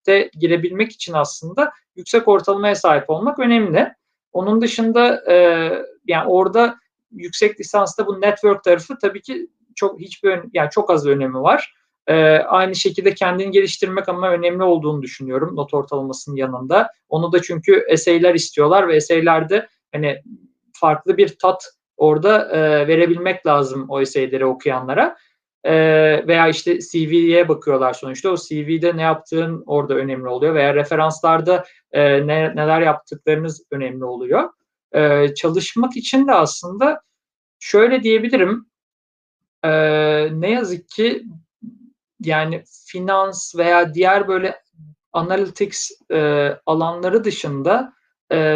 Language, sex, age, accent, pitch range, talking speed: Turkish, male, 50-69, native, 155-205 Hz, 120 wpm